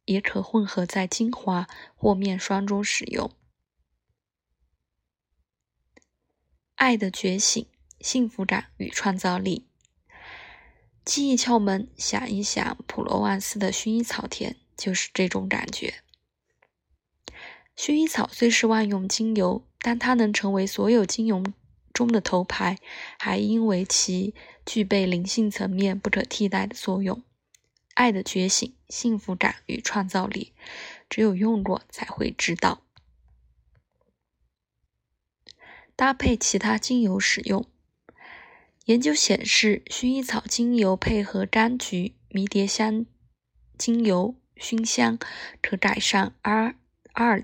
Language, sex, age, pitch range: Chinese, female, 20-39, 190-230 Hz